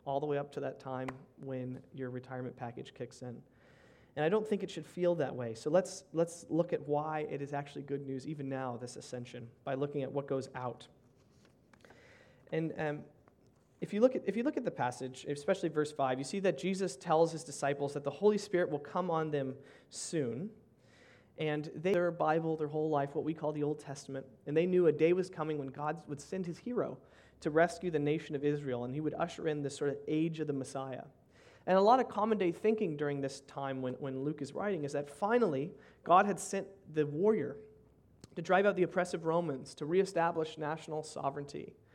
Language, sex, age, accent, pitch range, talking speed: English, male, 30-49, American, 140-175 Hz, 215 wpm